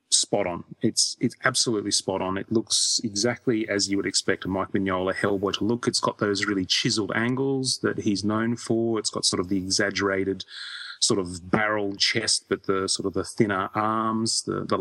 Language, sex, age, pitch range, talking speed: English, male, 30-49, 95-120 Hz, 200 wpm